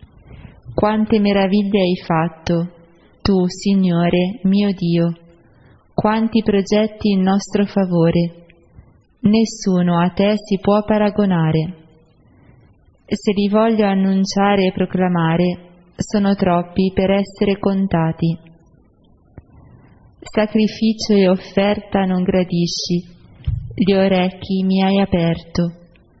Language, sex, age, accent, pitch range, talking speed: Italian, female, 20-39, native, 170-200 Hz, 90 wpm